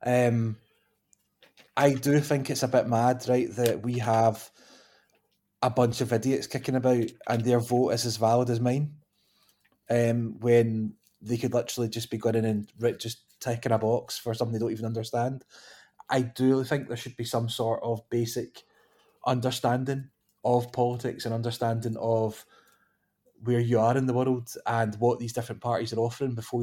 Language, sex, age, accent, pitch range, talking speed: English, male, 20-39, British, 115-125 Hz, 170 wpm